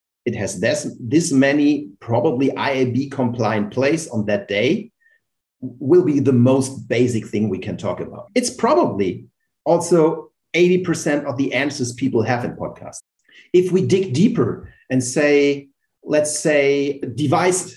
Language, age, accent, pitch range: English, 40-59, German, 120-155 Hz